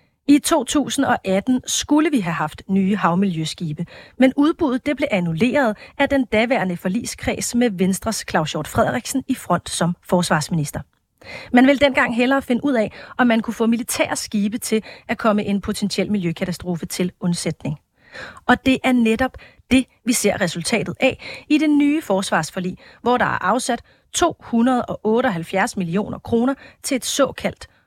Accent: native